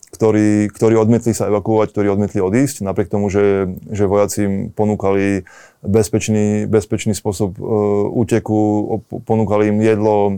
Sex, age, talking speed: male, 20-39, 125 wpm